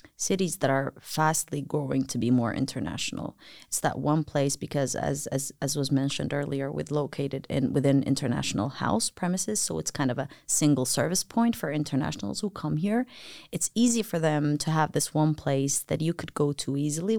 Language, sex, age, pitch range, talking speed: Finnish, female, 30-49, 145-185 Hz, 190 wpm